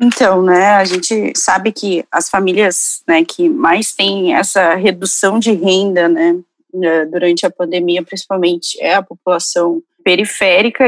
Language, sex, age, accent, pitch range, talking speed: Portuguese, female, 20-39, Brazilian, 185-220 Hz, 140 wpm